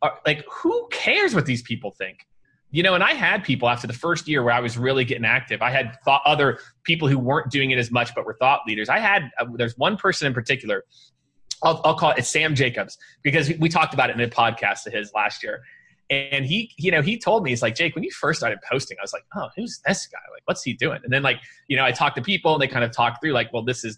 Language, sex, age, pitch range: English, male, 20-39, 120-155 Hz